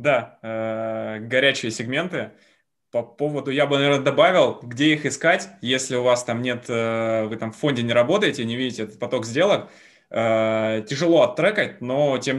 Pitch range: 115-130 Hz